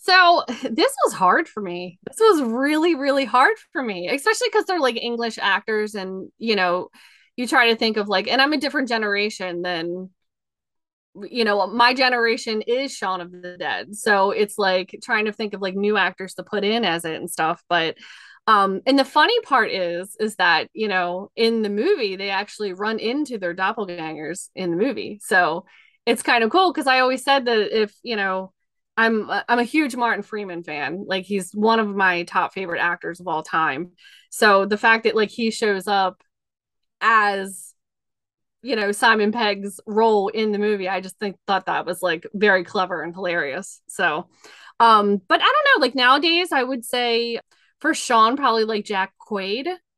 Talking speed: 190 wpm